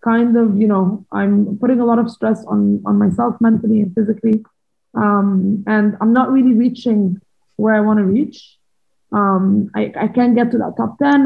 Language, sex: English, female